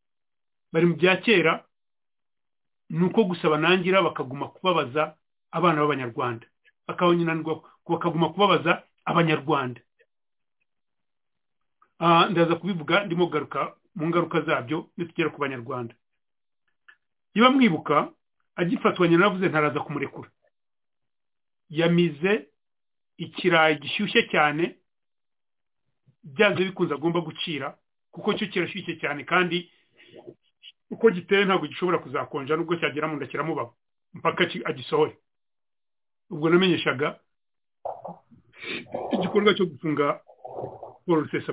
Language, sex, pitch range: English, male, 155-185 Hz